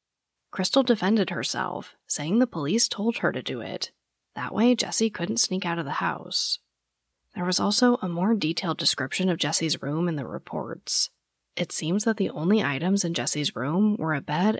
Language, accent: English, American